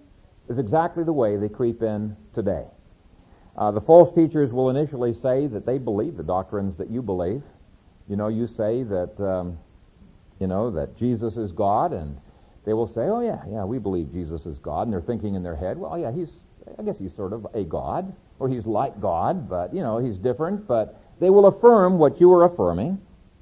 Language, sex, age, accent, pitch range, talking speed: English, male, 50-69, American, 105-170 Hz, 205 wpm